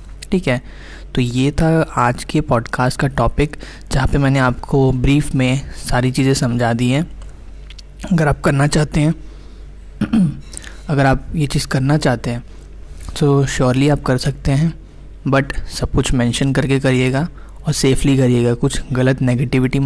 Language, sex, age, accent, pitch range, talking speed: Hindi, male, 20-39, native, 120-140 Hz, 155 wpm